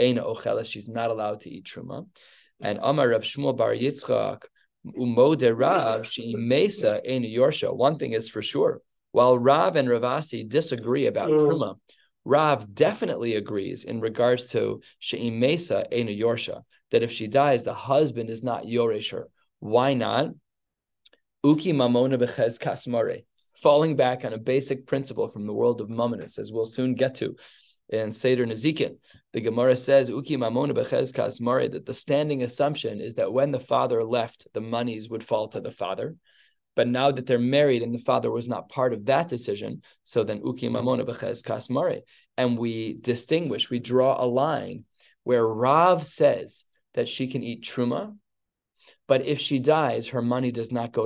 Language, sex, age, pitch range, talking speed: English, male, 20-39, 115-135 Hz, 155 wpm